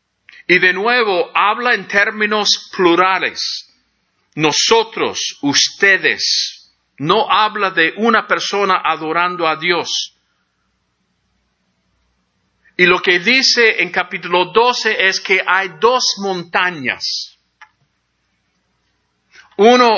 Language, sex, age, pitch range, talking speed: English, male, 50-69, 165-220 Hz, 90 wpm